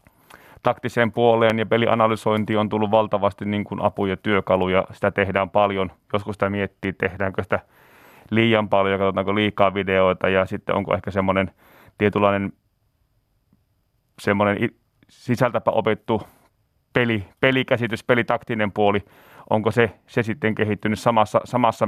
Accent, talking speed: native, 120 wpm